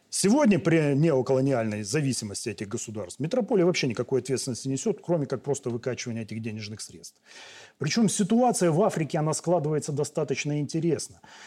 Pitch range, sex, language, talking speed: 125-165 Hz, male, Russian, 135 wpm